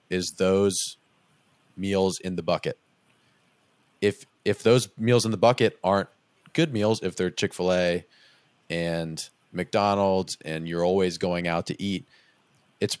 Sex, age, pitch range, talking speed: male, 30-49, 85-105 Hz, 135 wpm